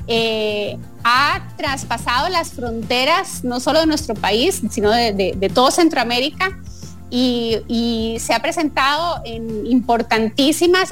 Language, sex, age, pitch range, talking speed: English, female, 30-49, 225-315 Hz, 125 wpm